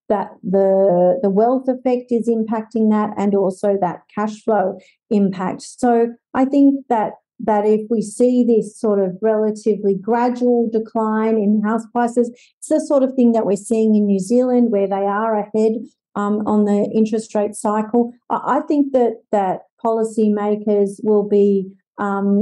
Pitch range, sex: 205-240 Hz, female